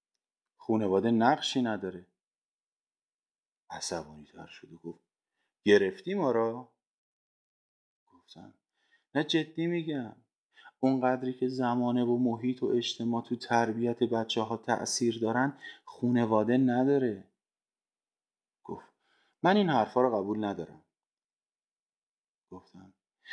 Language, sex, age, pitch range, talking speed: Persian, male, 30-49, 95-130 Hz, 95 wpm